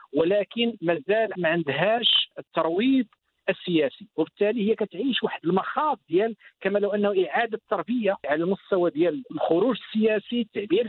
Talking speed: 115 wpm